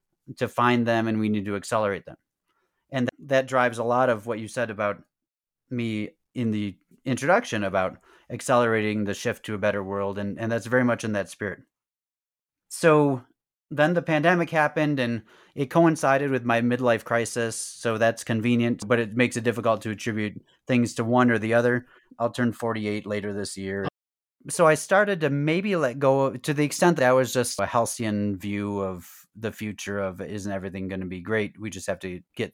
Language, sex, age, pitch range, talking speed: English, male, 30-49, 105-130 Hz, 195 wpm